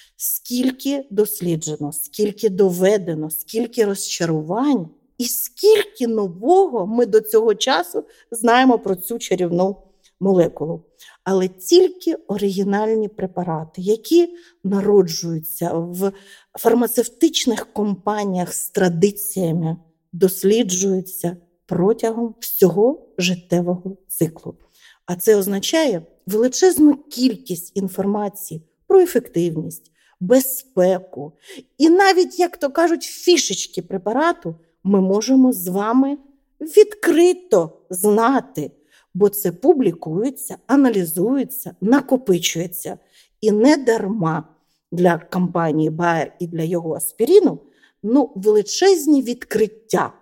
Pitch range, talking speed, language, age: 180-260 Hz, 90 wpm, Ukrainian, 50-69